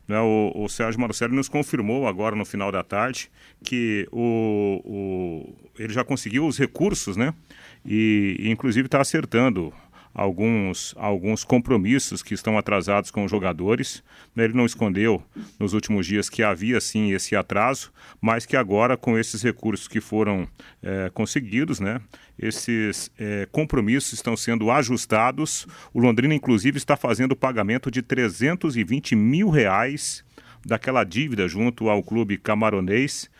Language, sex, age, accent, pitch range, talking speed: Portuguese, male, 40-59, Brazilian, 105-125 Hz, 145 wpm